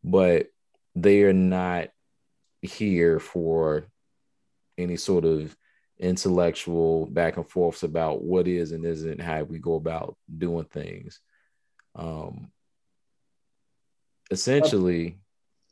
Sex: male